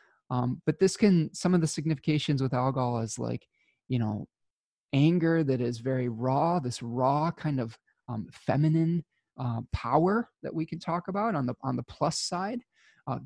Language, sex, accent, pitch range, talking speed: English, male, American, 125-155 Hz, 175 wpm